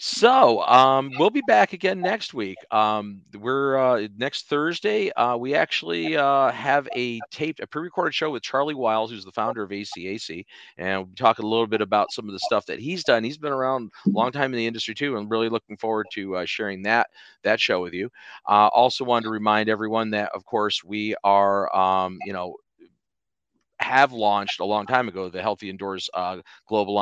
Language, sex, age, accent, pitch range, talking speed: English, male, 40-59, American, 105-135 Hz, 210 wpm